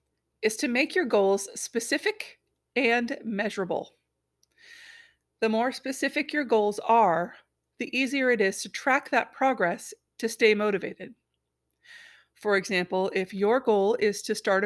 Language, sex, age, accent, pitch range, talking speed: English, female, 40-59, American, 200-265 Hz, 135 wpm